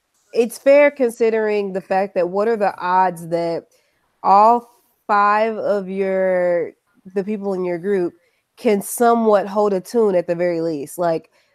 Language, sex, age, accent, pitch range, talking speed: English, female, 20-39, American, 180-220 Hz, 155 wpm